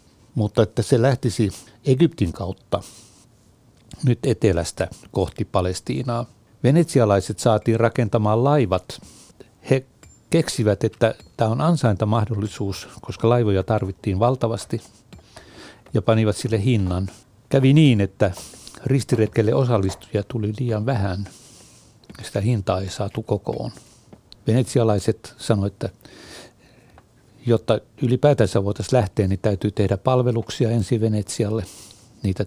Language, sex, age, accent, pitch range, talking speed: Finnish, male, 60-79, native, 105-125 Hz, 105 wpm